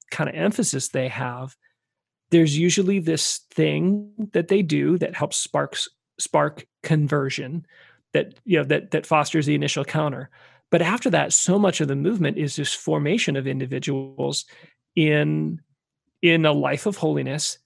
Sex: male